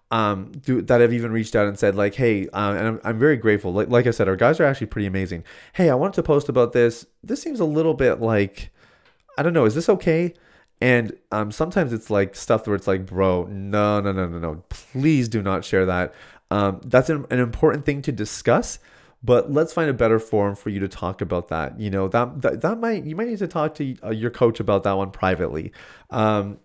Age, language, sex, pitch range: 30-49, English, male, 100-130 Hz